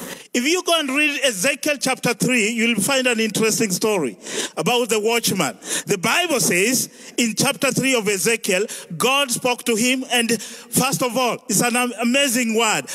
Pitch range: 210-270 Hz